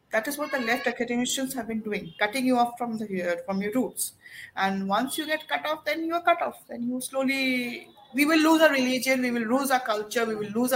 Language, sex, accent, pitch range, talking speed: Hindi, female, native, 225-290 Hz, 255 wpm